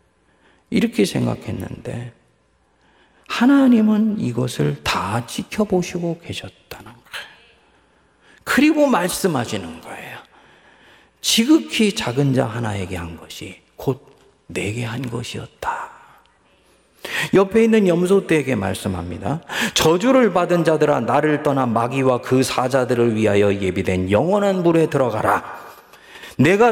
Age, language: 40-59, Korean